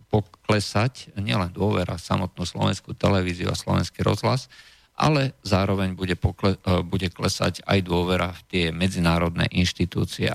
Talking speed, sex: 120 wpm, male